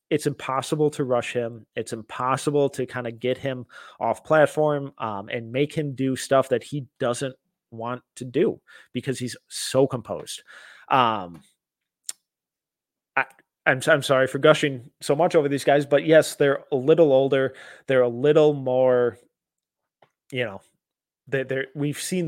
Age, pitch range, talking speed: 20-39, 120-145 Hz, 155 wpm